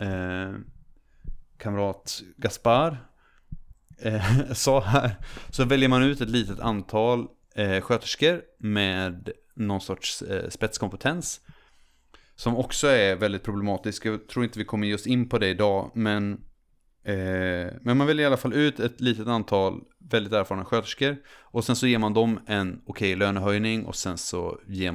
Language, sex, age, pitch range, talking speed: Swedish, male, 30-49, 95-125 Hz, 155 wpm